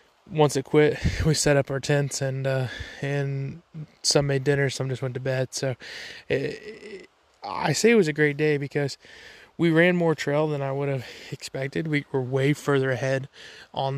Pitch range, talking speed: 135-150 Hz, 195 wpm